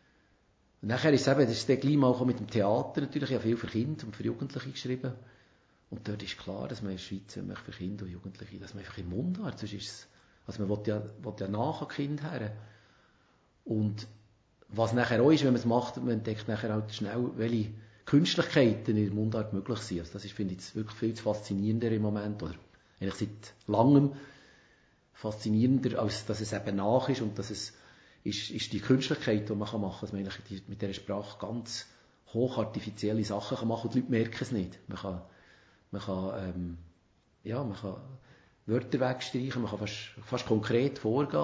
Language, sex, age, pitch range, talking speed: German, male, 50-69, 105-125 Hz, 210 wpm